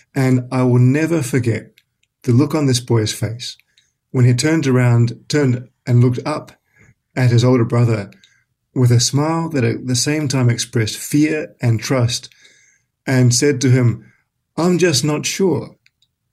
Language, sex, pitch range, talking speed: English, male, 120-140 Hz, 160 wpm